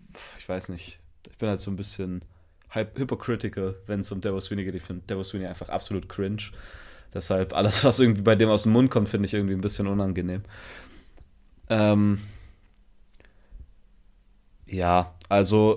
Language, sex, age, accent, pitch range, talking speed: German, male, 20-39, German, 100-125 Hz, 160 wpm